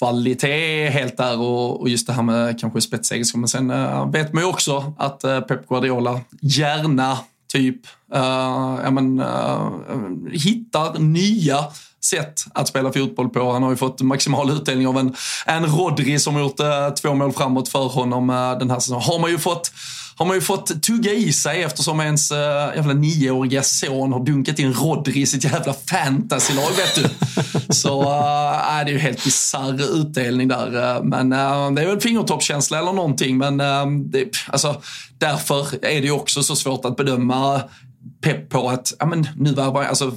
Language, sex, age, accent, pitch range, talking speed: Swedish, male, 20-39, native, 130-150 Hz, 175 wpm